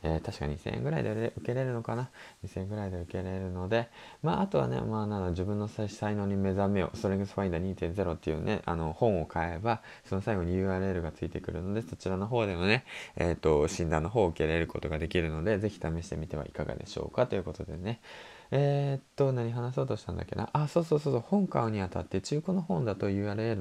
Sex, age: male, 20-39